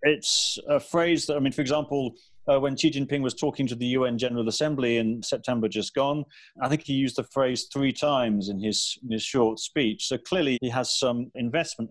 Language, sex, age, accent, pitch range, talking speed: English, male, 40-59, British, 115-140 Hz, 215 wpm